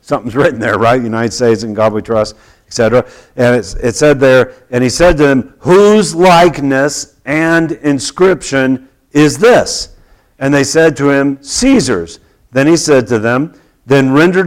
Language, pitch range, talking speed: English, 120-160 Hz, 165 wpm